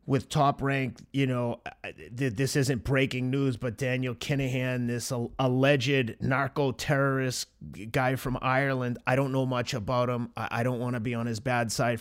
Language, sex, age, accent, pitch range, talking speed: English, male, 30-49, American, 120-135 Hz, 170 wpm